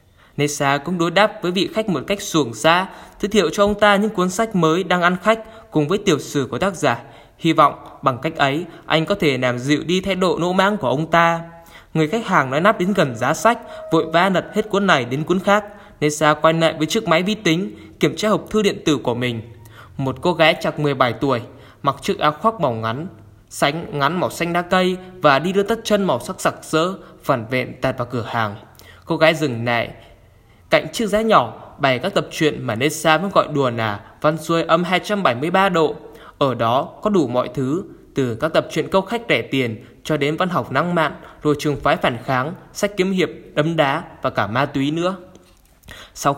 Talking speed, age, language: 225 wpm, 10-29, Vietnamese